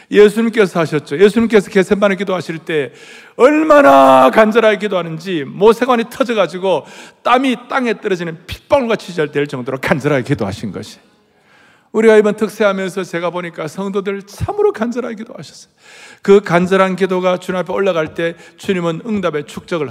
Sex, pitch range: male, 170-225 Hz